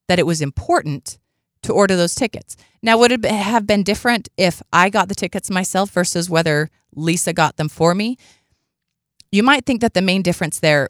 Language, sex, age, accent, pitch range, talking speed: English, female, 30-49, American, 170-240 Hz, 195 wpm